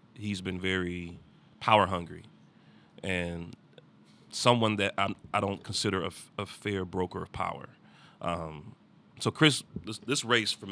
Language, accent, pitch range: English, American, 85-100 Hz